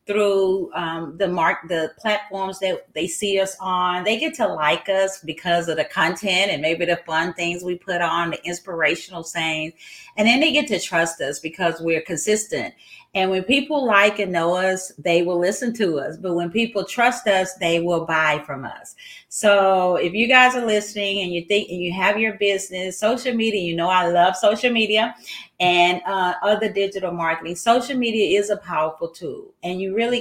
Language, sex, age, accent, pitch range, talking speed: English, female, 40-59, American, 170-210 Hz, 195 wpm